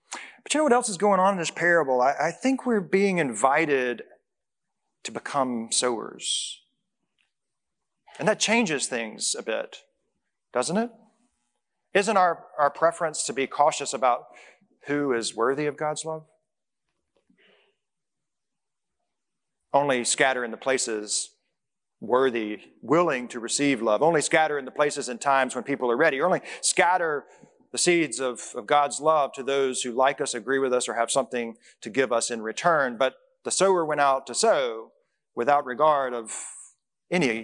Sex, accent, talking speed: male, American, 155 wpm